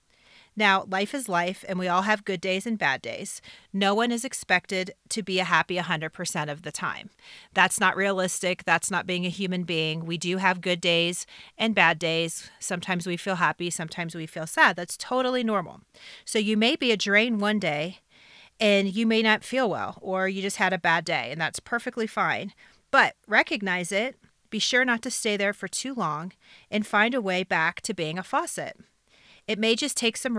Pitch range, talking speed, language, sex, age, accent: 180-220 Hz, 205 wpm, English, female, 30-49, American